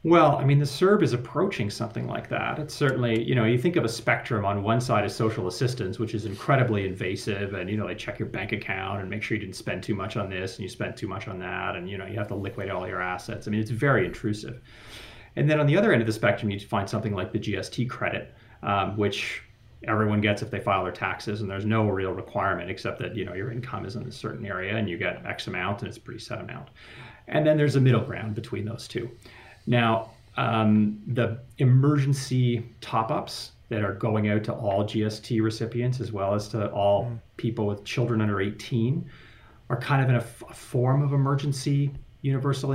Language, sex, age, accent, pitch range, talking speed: English, male, 30-49, American, 100-120 Hz, 225 wpm